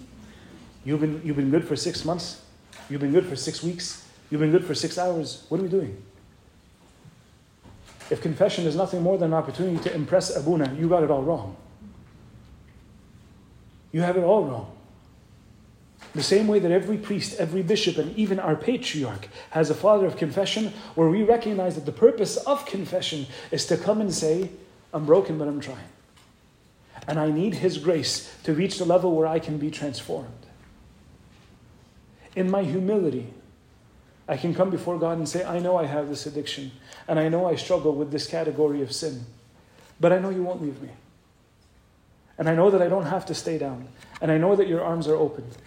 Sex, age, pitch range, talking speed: male, 40-59, 135-180 Hz, 190 wpm